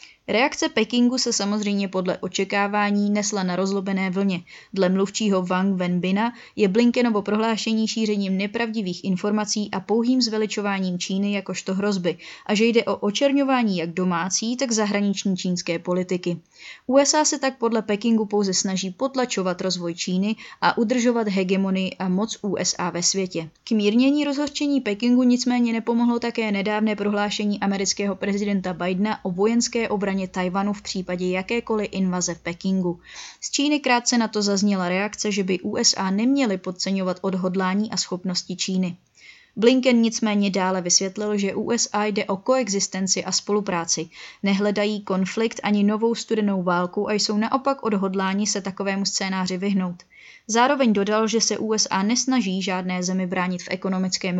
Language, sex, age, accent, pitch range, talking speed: Czech, female, 20-39, native, 185-225 Hz, 140 wpm